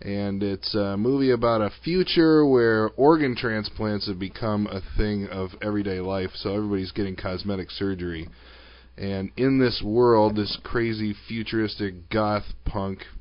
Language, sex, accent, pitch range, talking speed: English, male, American, 90-110 Hz, 135 wpm